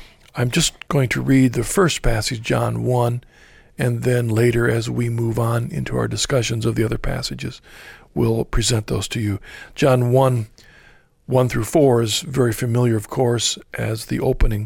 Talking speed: 170 wpm